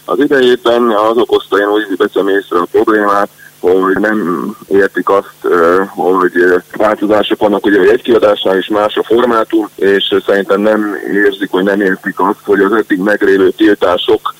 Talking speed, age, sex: 145 wpm, 20-39, male